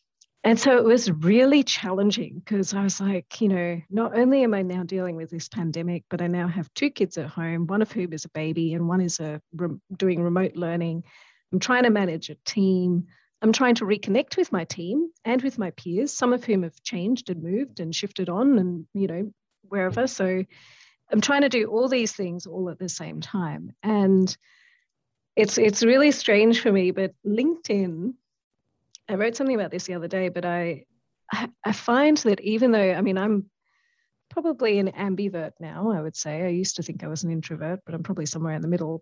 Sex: female